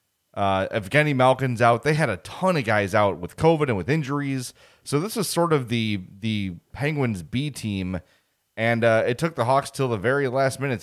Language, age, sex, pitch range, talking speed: English, 30-49, male, 105-135 Hz, 205 wpm